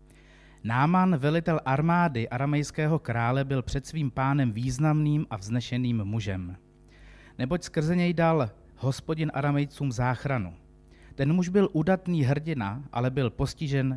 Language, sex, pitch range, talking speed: Czech, male, 110-155 Hz, 120 wpm